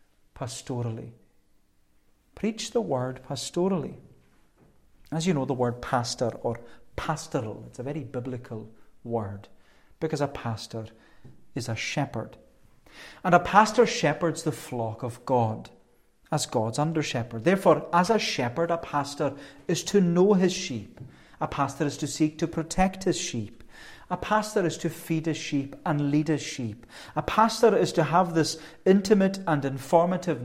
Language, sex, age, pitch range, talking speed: English, male, 40-59, 125-170 Hz, 150 wpm